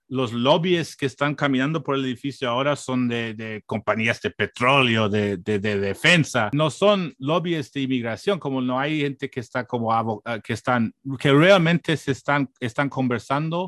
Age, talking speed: 30-49, 170 wpm